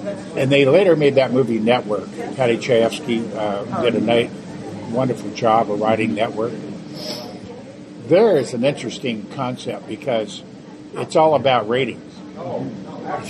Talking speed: 135 wpm